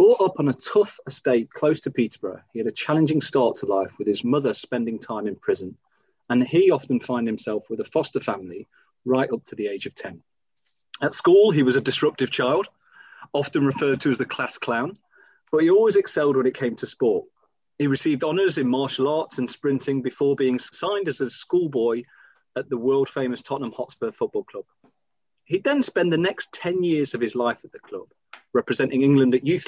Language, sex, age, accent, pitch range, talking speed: English, male, 30-49, British, 125-175 Hz, 205 wpm